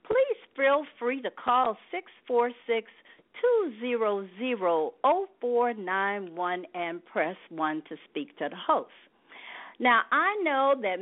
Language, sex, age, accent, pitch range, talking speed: English, female, 50-69, American, 205-315 Hz, 100 wpm